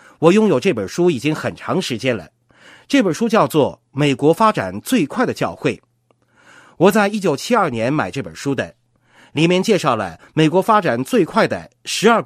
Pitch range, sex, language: 145-245 Hz, male, Chinese